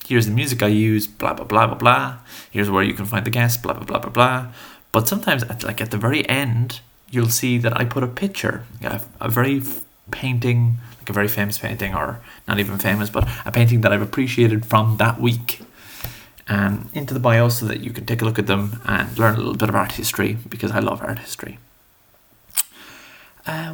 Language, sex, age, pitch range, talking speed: English, male, 20-39, 105-120 Hz, 220 wpm